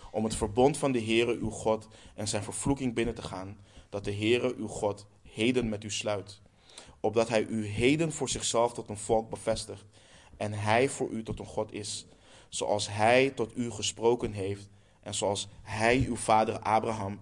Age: 20-39